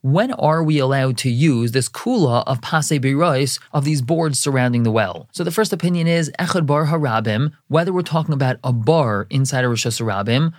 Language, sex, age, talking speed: English, male, 20-39, 200 wpm